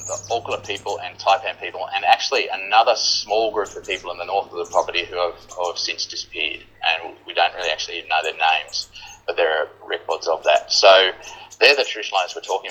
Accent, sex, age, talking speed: Australian, male, 30-49, 210 wpm